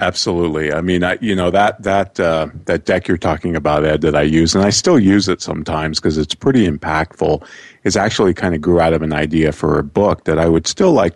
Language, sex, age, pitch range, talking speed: English, male, 40-59, 80-95 Hz, 240 wpm